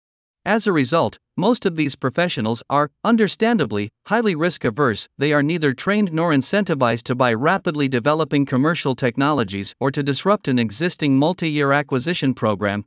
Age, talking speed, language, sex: 50-69, 145 wpm, Vietnamese, male